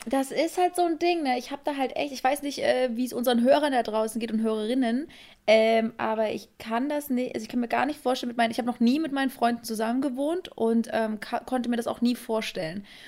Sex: female